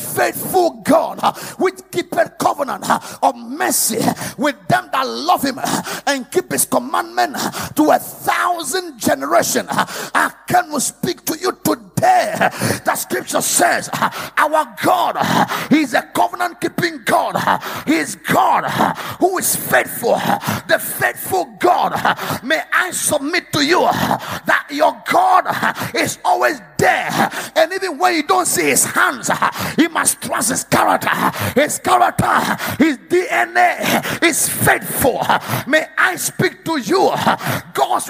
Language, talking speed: English, 130 wpm